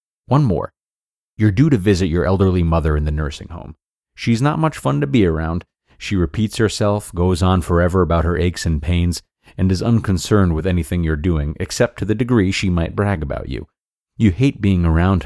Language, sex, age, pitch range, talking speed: English, male, 30-49, 85-110 Hz, 200 wpm